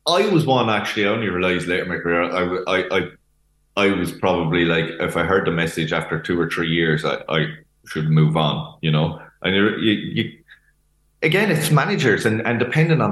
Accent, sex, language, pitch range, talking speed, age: Irish, male, English, 85-115 Hz, 195 wpm, 20-39